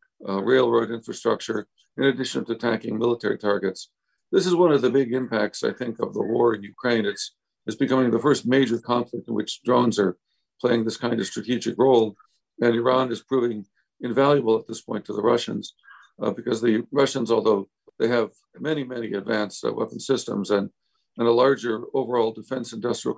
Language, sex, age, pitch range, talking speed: English, male, 60-79, 110-130 Hz, 185 wpm